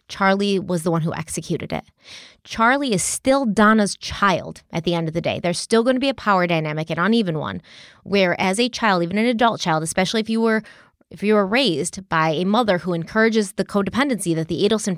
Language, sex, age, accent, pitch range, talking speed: English, female, 20-39, American, 175-225 Hz, 220 wpm